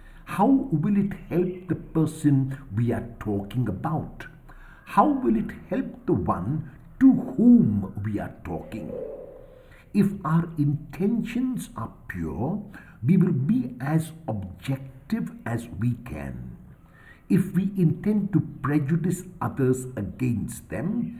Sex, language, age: male, English, 60-79